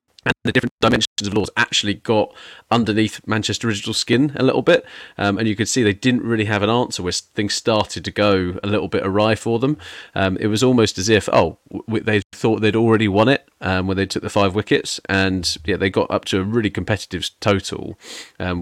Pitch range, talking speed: 90-110 Hz, 220 wpm